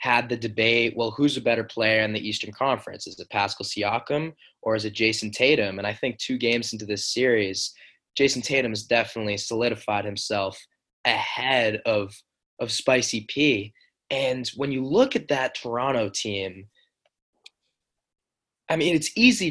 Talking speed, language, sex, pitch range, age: 160 wpm, English, male, 105-125 Hz, 20-39